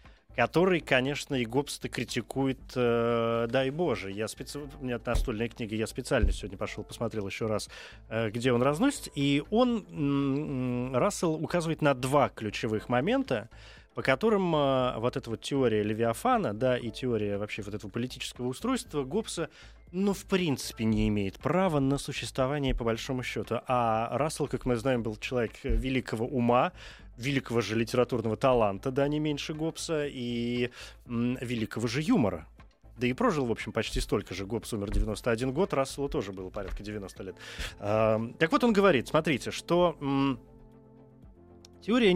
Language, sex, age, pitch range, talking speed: Russian, male, 20-39, 115-145 Hz, 160 wpm